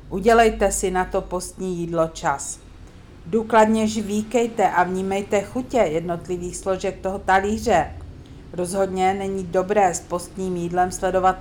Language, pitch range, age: Czech, 160-185 Hz, 50-69